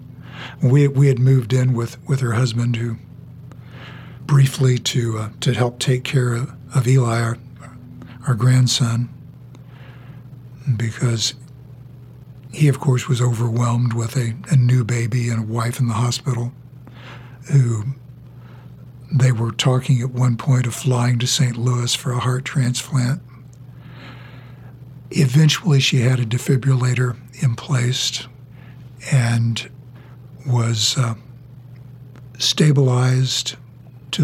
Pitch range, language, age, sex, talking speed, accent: 125-130 Hz, English, 60-79, male, 115 wpm, American